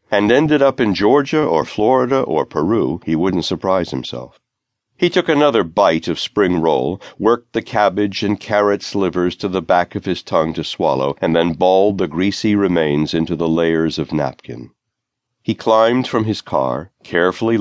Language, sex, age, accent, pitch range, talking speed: English, male, 60-79, American, 85-115 Hz, 175 wpm